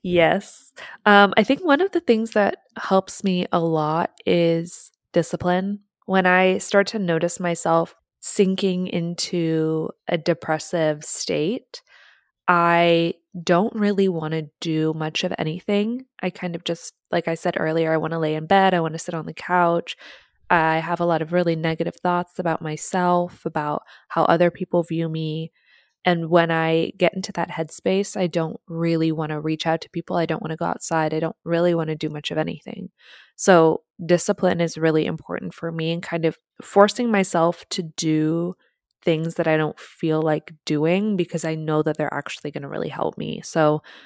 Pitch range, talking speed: 160-180 Hz, 185 wpm